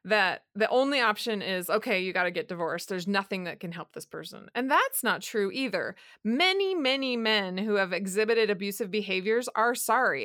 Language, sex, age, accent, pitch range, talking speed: English, female, 20-39, American, 205-255 Hz, 195 wpm